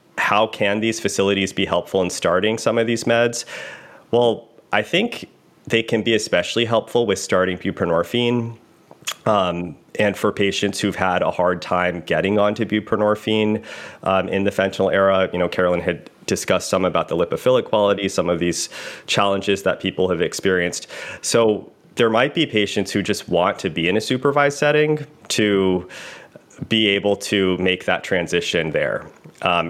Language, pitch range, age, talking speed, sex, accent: English, 95-115 Hz, 30-49, 165 wpm, male, American